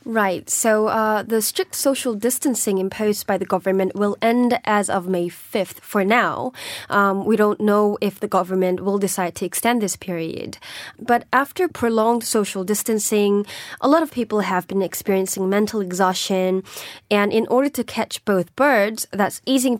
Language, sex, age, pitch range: Korean, female, 20-39, 190-230 Hz